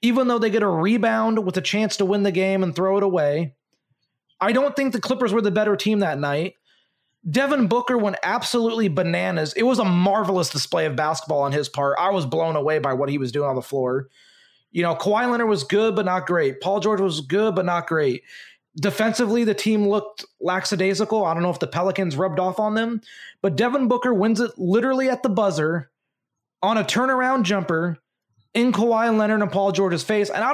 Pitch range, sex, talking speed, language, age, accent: 175-230 Hz, male, 210 wpm, English, 30-49, American